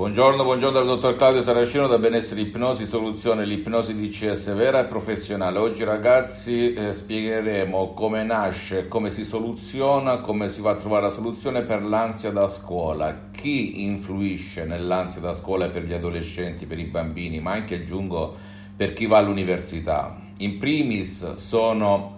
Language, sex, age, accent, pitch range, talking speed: Italian, male, 50-69, native, 95-115 Hz, 155 wpm